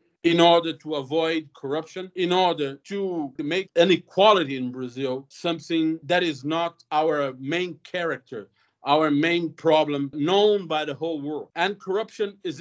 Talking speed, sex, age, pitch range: 145 wpm, male, 50-69, 145-185 Hz